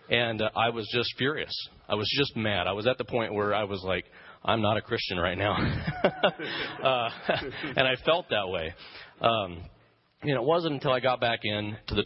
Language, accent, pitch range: English, American, 95-110 Hz